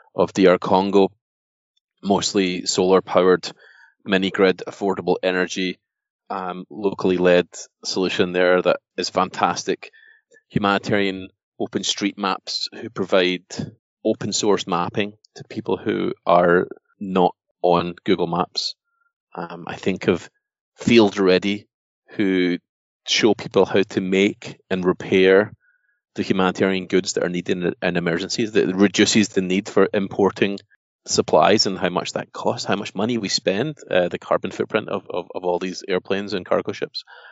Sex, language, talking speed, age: male, English, 140 wpm, 30-49